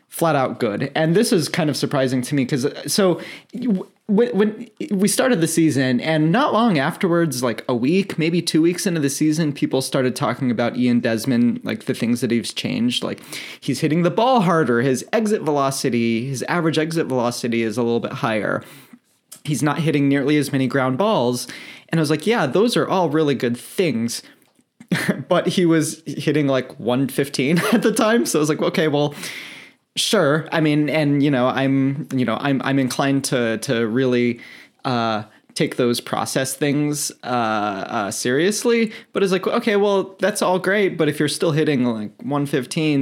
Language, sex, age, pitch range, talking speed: English, male, 20-39, 130-190 Hz, 185 wpm